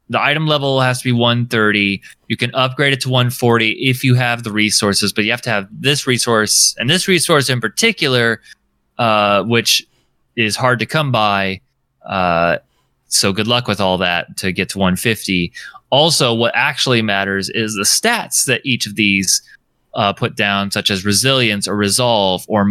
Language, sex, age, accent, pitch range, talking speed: English, male, 20-39, American, 105-130 Hz, 180 wpm